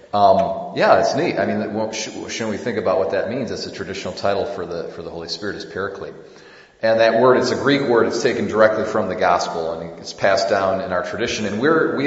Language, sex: English, male